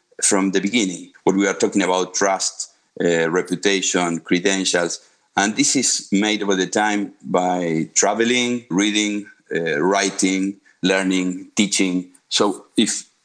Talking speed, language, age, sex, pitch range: 125 wpm, English, 50-69, male, 90-105 Hz